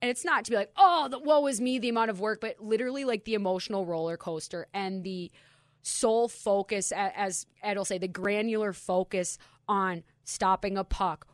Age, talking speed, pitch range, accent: 20-39, 200 wpm, 175-210 Hz, American